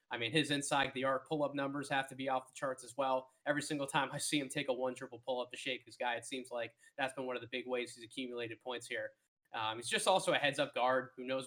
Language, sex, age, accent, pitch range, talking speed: English, male, 20-39, American, 125-150 Hz, 270 wpm